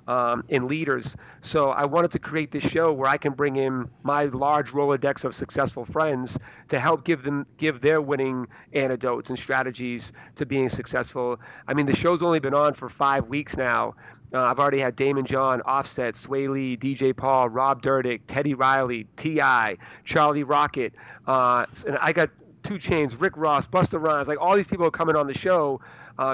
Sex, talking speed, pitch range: male, 190 wpm, 130-155 Hz